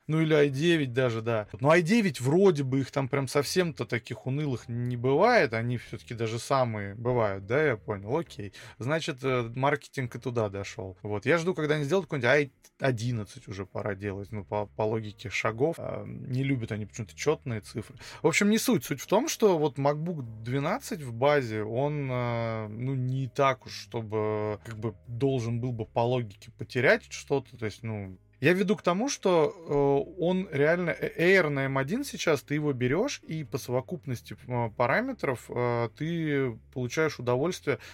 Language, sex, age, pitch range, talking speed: Russian, male, 20-39, 115-145 Hz, 165 wpm